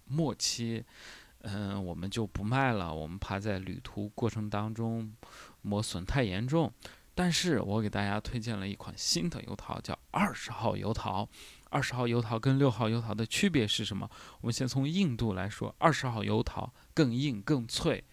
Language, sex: Chinese, male